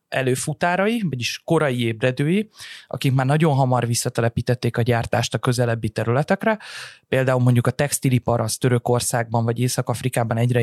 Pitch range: 115-140 Hz